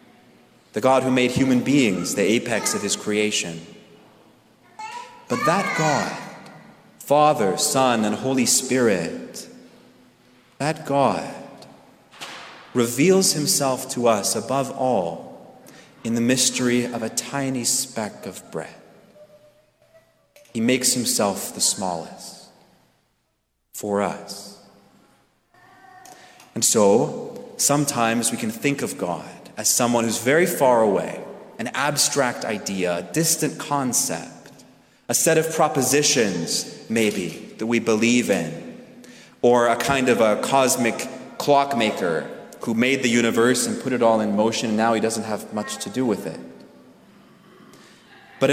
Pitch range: 115-165 Hz